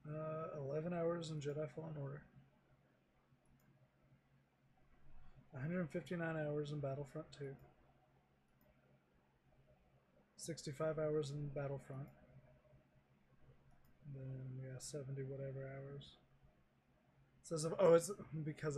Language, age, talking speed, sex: English, 20-39, 100 wpm, male